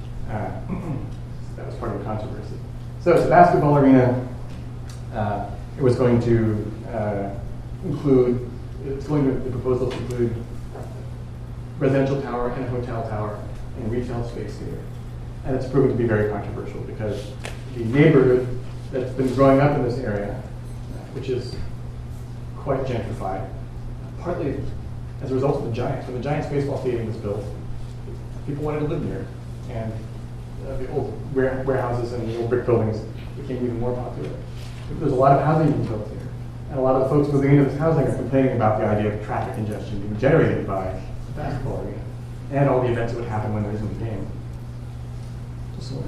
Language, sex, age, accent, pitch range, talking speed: English, male, 40-59, American, 115-130 Hz, 175 wpm